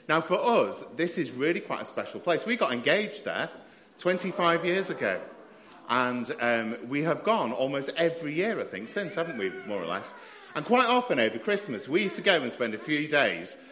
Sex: male